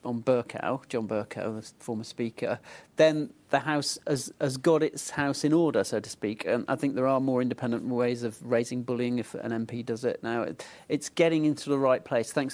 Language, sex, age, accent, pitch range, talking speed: English, male, 40-59, British, 120-155 Hz, 215 wpm